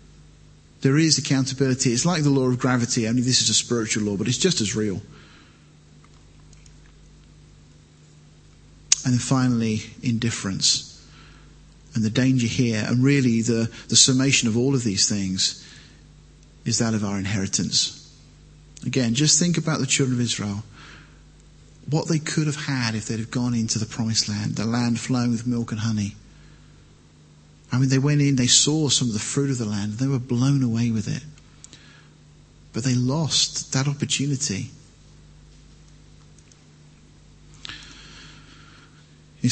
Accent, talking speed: British, 145 wpm